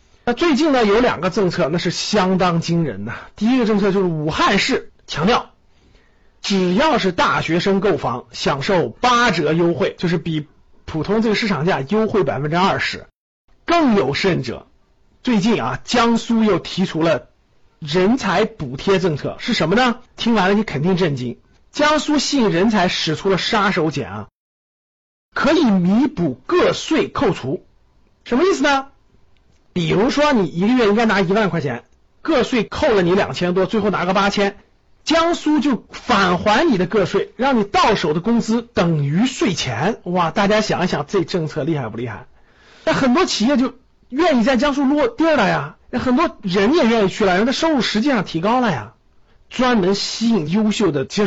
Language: Chinese